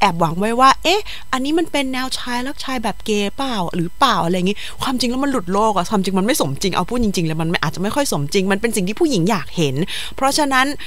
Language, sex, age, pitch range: Thai, female, 20-39, 180-245 Hz